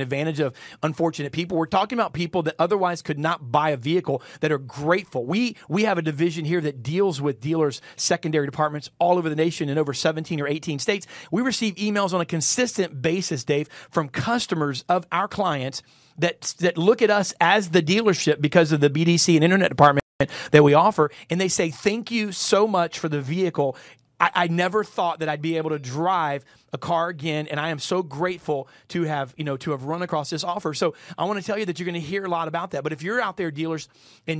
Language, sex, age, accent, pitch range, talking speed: English, male, 40-59, American, 150-185 Hz, 230 wpm